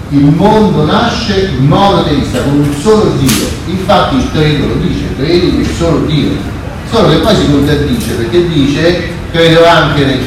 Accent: native